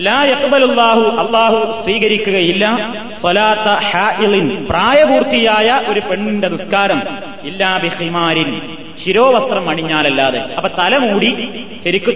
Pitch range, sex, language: 185-235 Hz, male, Malayalam